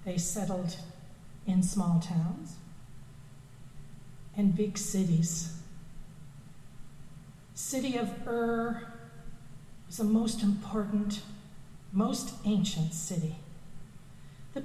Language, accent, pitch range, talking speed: English, American, 150-210 Hz, 80 wpm